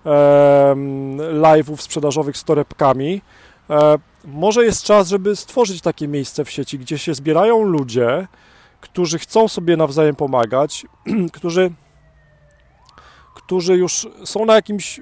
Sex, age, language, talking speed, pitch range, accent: male, 40-59, Polish, 110 wpm, 140-190 Hz, native